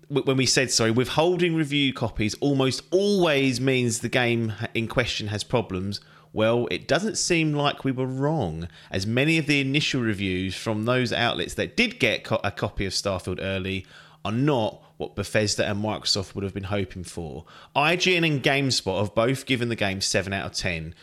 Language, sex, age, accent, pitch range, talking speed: English, male, 30-49, British, 100-145 Hz, 185 wpm